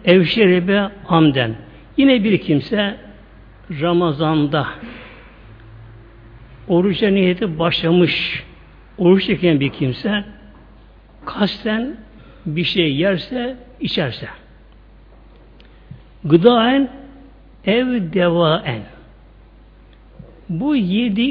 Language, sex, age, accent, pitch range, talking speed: Turkish, male, 60-79, native, 165-220 Hz, 70 wpm